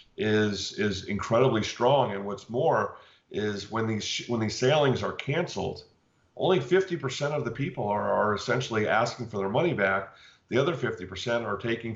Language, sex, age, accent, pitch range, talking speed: English, male, 40-59, American, 105-125 Hz, 165 wpm